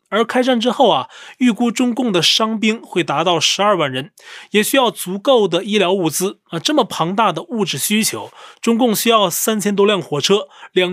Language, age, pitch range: Chinese, 20-39, 175-225 Hz